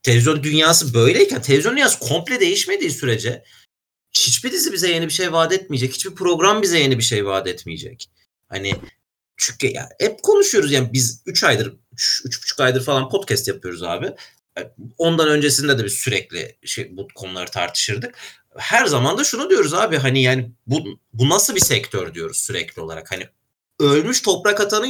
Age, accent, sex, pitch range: 40-59, native, male, 130-205 Hz